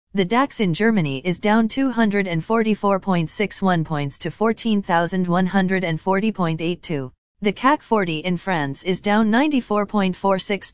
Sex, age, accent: female, 40-59, American